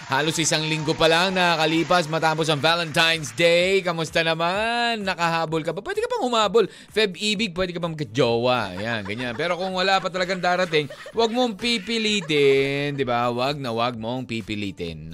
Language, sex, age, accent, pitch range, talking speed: Filipino, male, 20-39, native, 155-210 Hz, 170 wpm